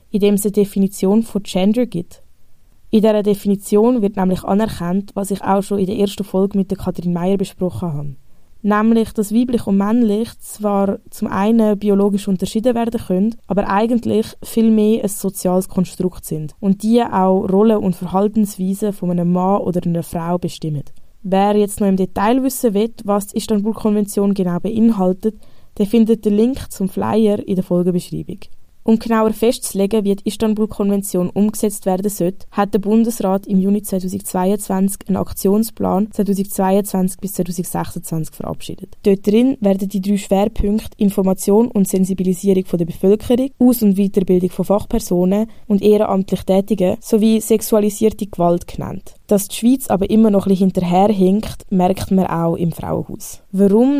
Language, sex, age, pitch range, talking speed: German, female, 20-39, 190-215 Hz, 155 wpm